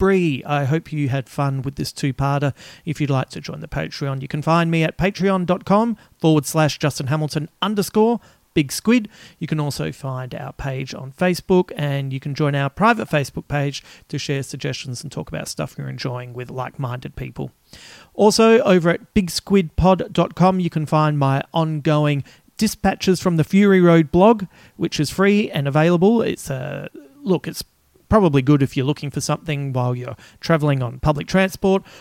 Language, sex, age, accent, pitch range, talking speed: English, male, 40-59, Australian, 140-175 Hz, 180 wpm